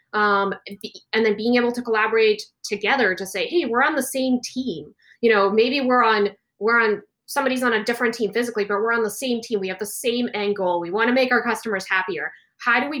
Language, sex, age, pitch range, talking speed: English, female, 20-39, 210-255 Hz, 230 wpm